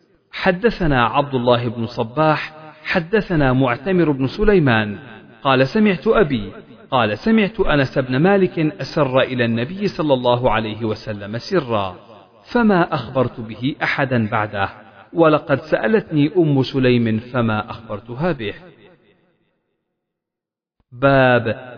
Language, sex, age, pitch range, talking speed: Arabic, male, 40-59, 115-170 Hz, 105 wpm